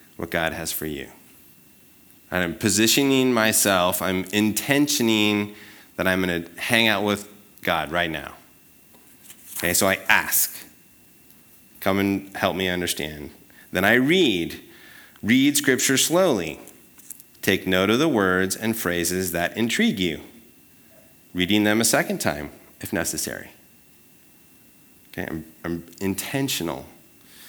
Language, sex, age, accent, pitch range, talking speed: English, male, 30-49, American, 90-120 Hz, 125 wpm